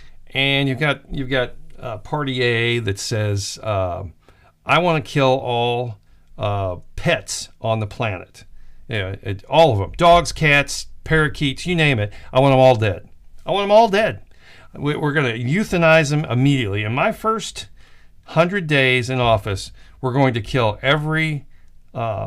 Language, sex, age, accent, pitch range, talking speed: English, male, 50-69, American, 105-155 Hz, 160 wpm